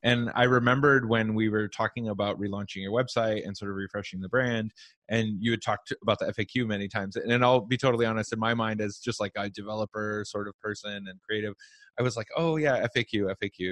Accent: American